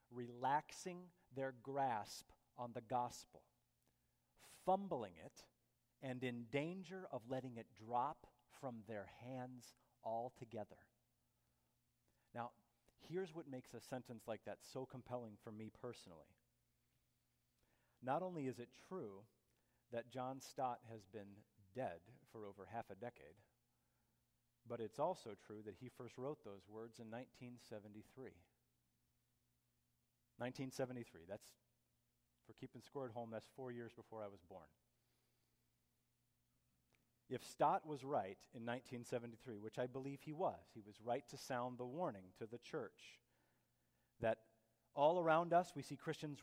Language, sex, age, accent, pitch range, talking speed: English, male, 40-59, American, 110-135 Hz, 130 wpm